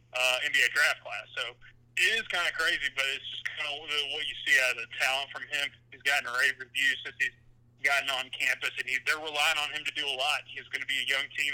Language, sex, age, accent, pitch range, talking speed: English, male, 30-49, American, 120-145 Hz, 265 wpm